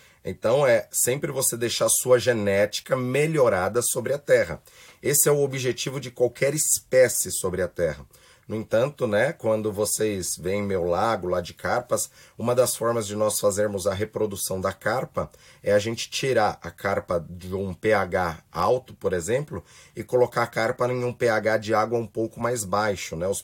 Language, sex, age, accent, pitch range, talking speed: Portuguese, male, 30-49, Brazilian, 105-125 Hz, 175 wpm